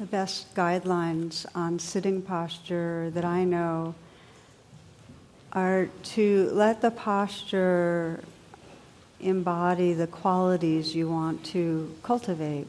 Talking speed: 100 wpm